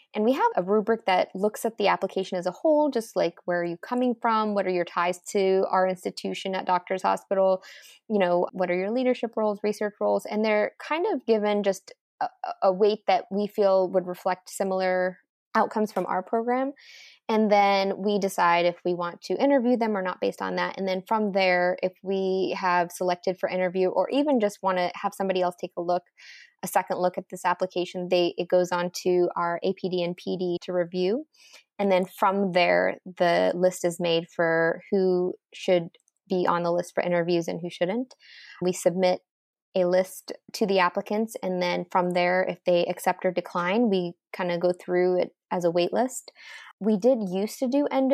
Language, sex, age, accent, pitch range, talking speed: English, female, 20-39, American, 180-215 Hz, 205 wpm